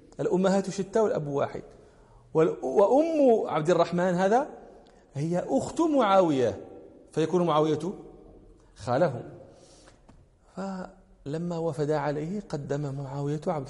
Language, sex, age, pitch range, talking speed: English, male, 40-59, 140-185 Hz, 90 wpm